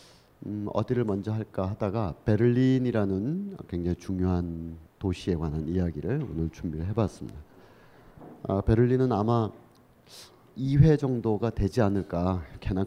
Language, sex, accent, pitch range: Korean, male, native, 95-130 Hz